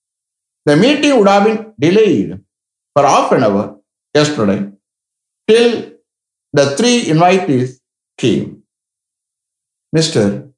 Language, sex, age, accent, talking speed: English, male, 60-79, Indian, 95 wpm